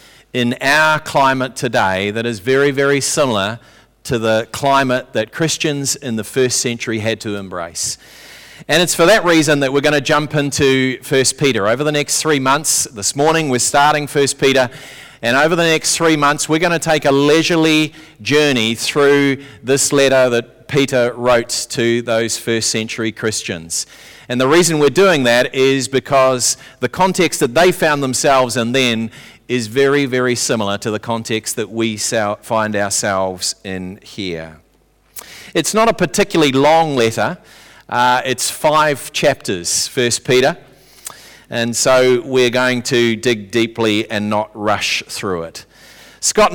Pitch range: 115-150 Hz